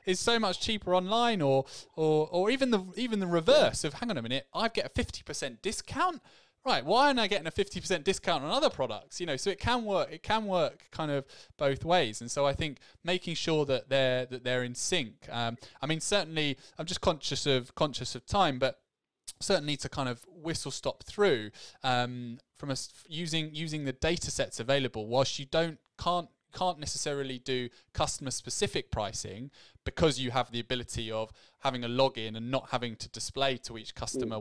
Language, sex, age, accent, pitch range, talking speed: English, male, 20-39, British, 120-160 Hz, 200 wpm